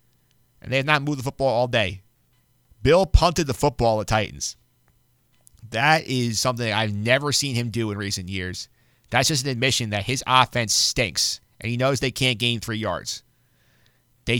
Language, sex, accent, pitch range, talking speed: English, male, American, 105-130 Hz, 180 wpm